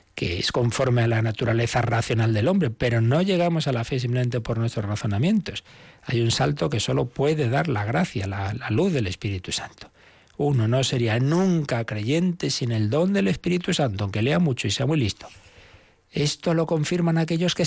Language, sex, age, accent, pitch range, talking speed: Spanish, male, 60-79, Spanish, 105-155 Hz, 195 wpm